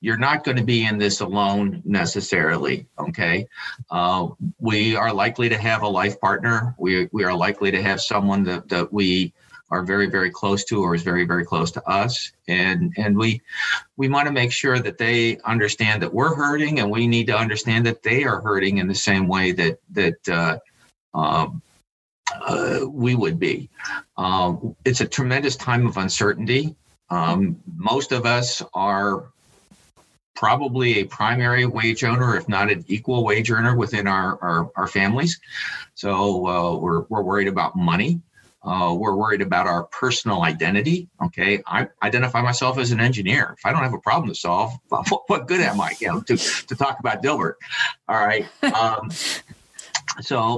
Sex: male